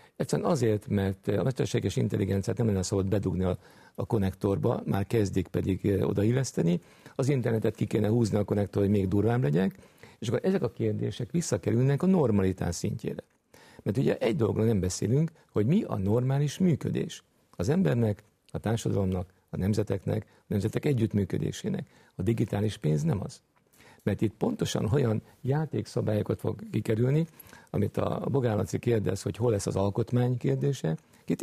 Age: 50-69